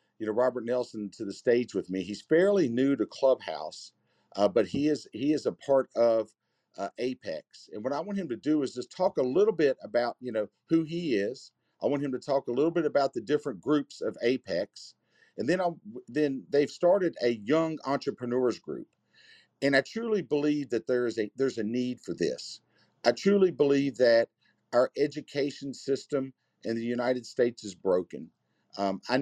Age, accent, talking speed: 50-69, American, 195 wpm